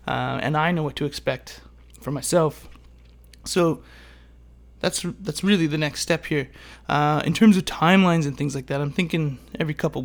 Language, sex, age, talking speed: English, male, 20-39, 180 wpm